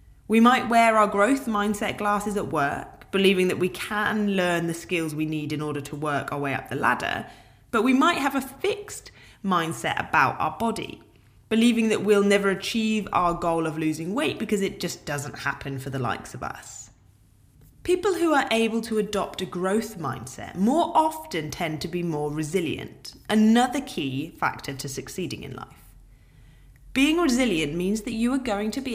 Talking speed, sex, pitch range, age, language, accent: 185 wpm, female, 145-230 Hz, 20-39, English, British